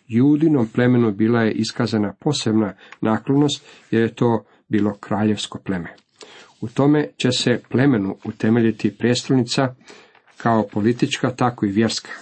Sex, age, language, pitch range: male, 50-69, Croatian, 105-125 Hz